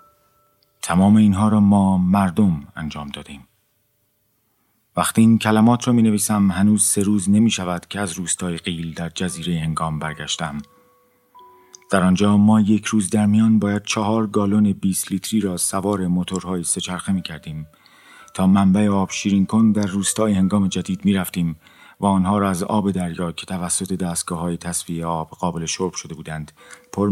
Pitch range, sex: 90-110 Hz, male